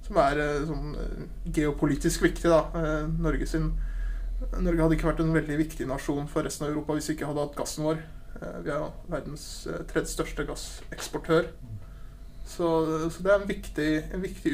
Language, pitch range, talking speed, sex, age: English, 150-170 Hz, 180 wpm, male, 20-39